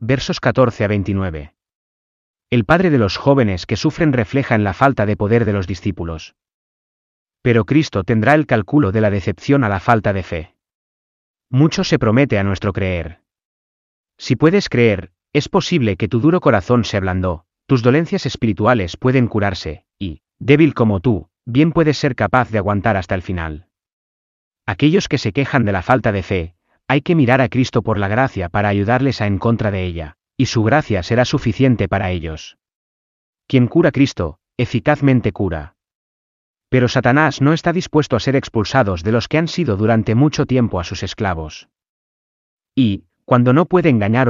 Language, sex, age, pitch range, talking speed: Spanish, male, 30-49, 95-135 Hz, 175 wpm